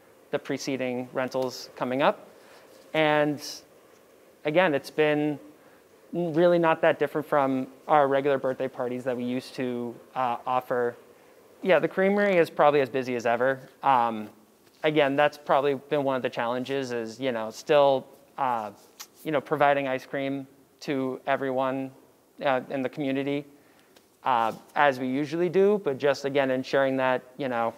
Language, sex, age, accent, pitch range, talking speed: English, male, 20-39, American, 130-145 Hz, 150 wpm